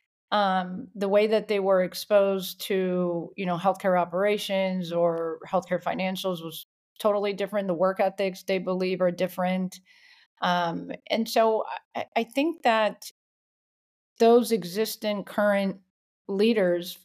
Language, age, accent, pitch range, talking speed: English, 40-59, American, 180-210 Hz, 125 wpm